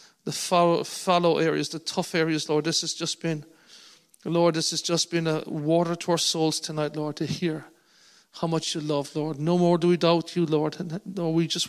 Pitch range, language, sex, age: 160-175 Hz, English, male, 40-59